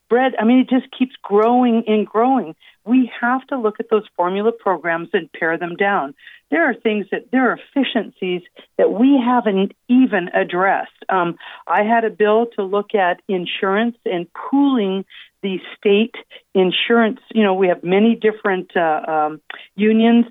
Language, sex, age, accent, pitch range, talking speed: English, female, 50-69, American, 185-235 Hz, 165 wpm